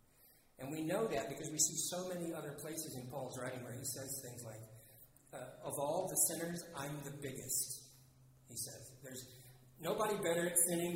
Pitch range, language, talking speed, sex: 130-165 Hz, English, 180 wpm, male